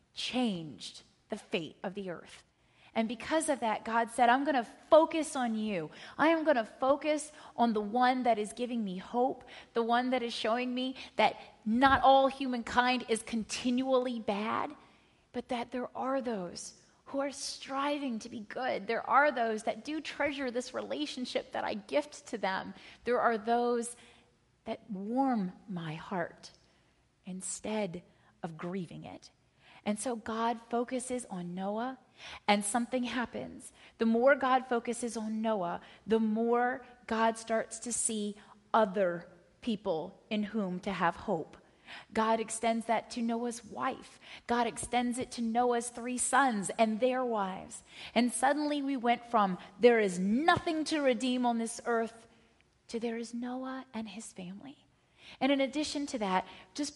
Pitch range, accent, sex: 215-255 Hz, American, female